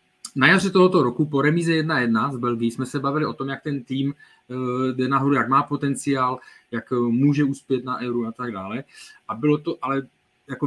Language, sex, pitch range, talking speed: Czech, male, 120-150 Hz, 195 wpm